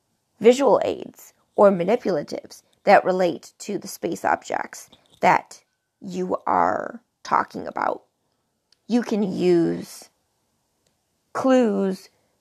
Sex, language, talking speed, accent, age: female, English, 90 wpm, American, 30-49